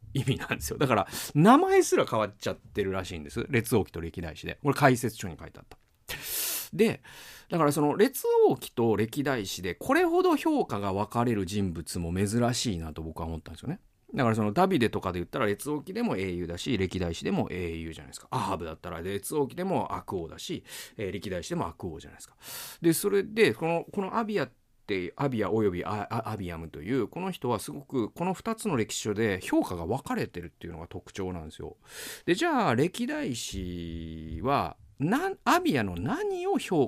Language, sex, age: Japanese, male, 40-59